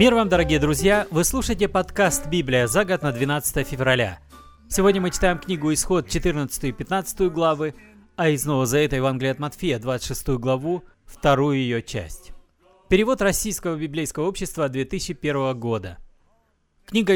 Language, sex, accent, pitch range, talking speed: Russian, male, native, 135-190 Hz, 140 wpm